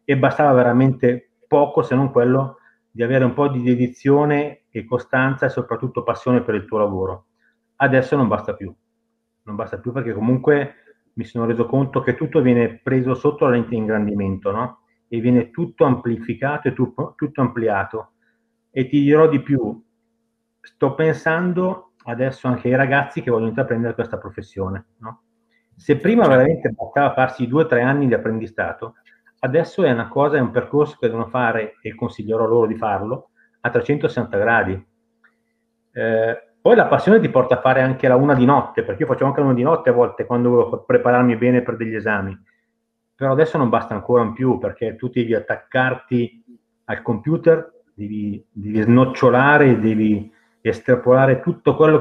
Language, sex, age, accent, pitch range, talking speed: Italian, male, 30-49, native, 115-145 Hz, 170 wpm